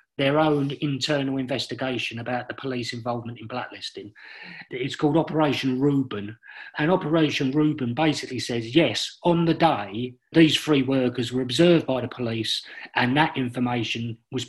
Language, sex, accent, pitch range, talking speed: English, male, British, 125-155 Hz, 145 wpm